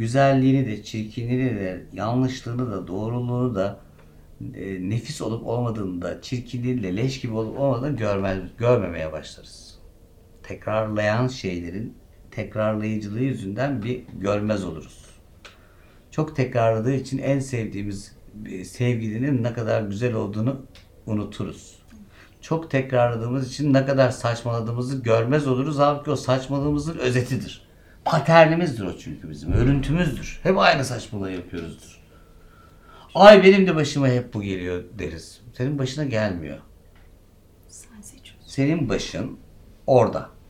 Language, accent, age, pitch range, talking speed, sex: Turkish, native, 60-79, 95-135 Hz, 110 wpm, male